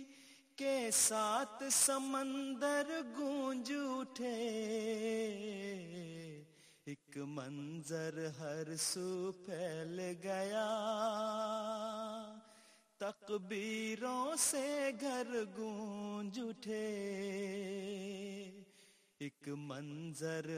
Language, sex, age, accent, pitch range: English, male, 30-49, Indian, 160-220 Hz